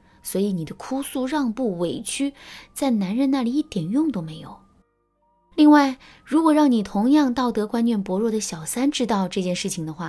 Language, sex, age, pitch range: Chinese, female, 20-39, 175-265 Hz